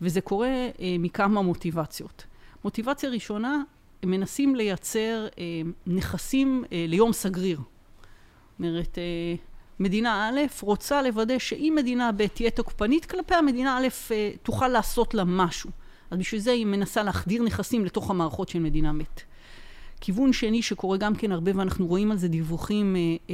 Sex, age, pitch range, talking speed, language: female, 40-59, 175-225 Hz, 150 wpm, Hebrew